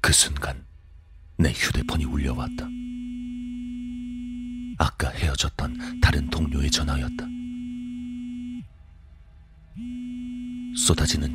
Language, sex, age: Korean, male, 40-59